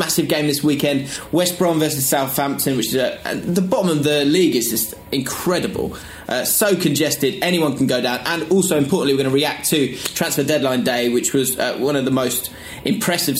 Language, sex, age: English, male, 20-39